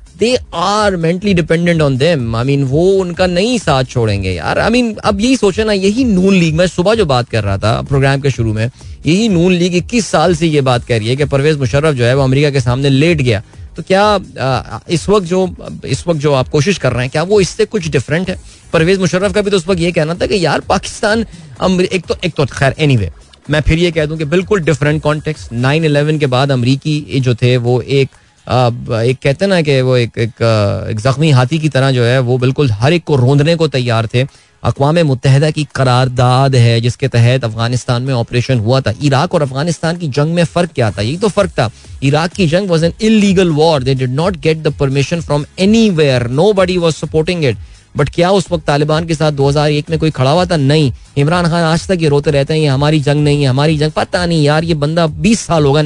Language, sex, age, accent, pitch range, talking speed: Hindi, male, 20-39, native, 130-175 Hz, 225 wpm